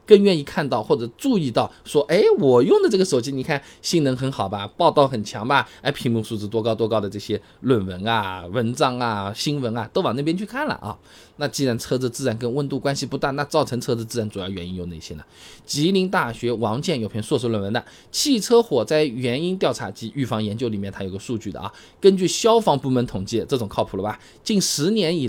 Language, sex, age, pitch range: Chinese, male, 20-39, 110-165 Hz